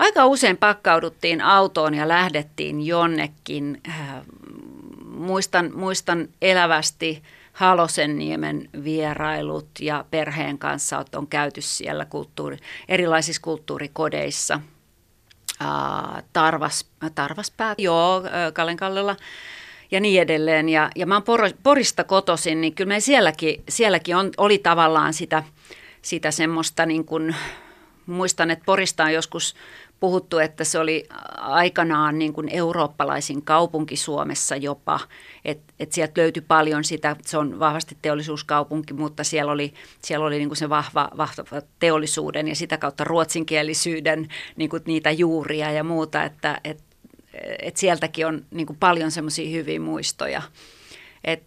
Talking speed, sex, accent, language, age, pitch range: 120 wpm, female, native, Finnish, 40-59, 150-175 Hz